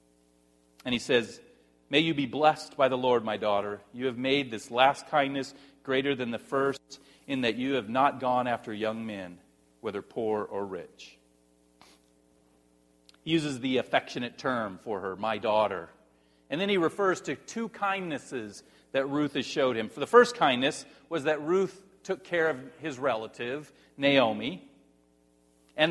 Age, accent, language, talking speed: 40-59, American, English, 160 wpm